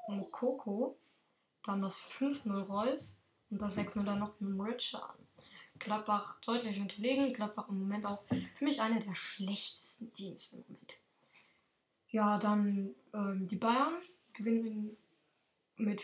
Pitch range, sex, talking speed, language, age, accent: 205-240 Hz, female, 130 wpm, German, 10-29, German